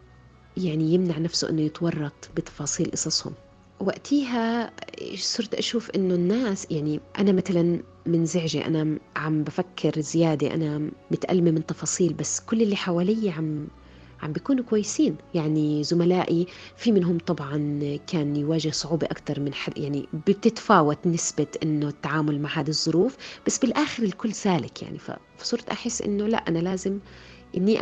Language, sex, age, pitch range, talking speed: Arabic, female, 30-49, 150-185 Hz, 135 wpm